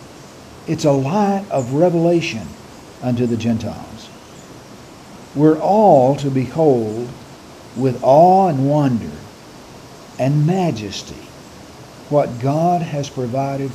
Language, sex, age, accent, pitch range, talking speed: English, male, 60-79, American, 115-155 Hz, 95 wpm